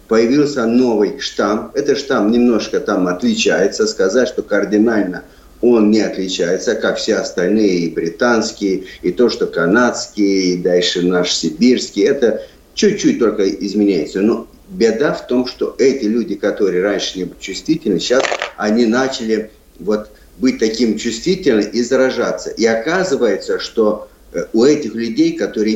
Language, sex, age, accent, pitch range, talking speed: Russian, male, 50-69, native, 105-135 Hz, 135 wpm